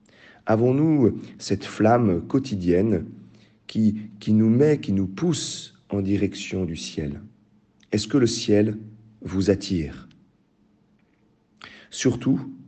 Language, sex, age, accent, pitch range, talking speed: French, male, 40-59, French, 95-115 Hz, 105 wpm